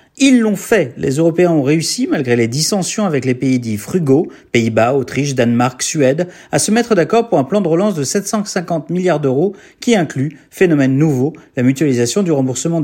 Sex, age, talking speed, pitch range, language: male, 40-59, 185 wpm, 135-190 Hz, French